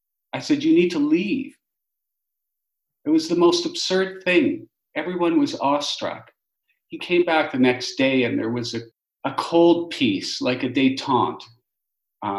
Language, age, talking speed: English, 50-69, 150 wpm